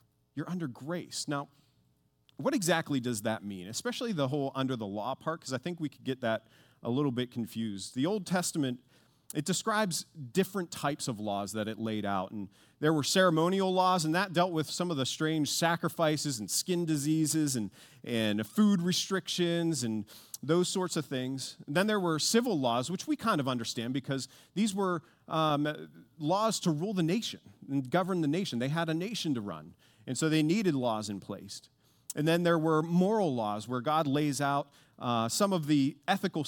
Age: 40-59